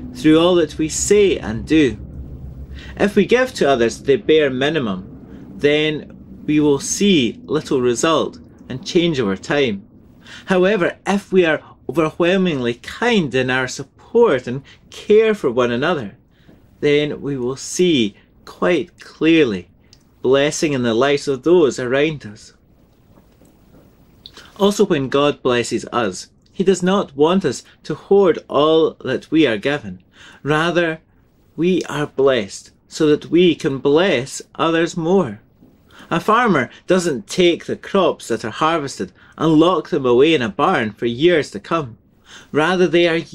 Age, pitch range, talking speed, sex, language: 30-49, 130-180 Hz, 145 wpm, male, English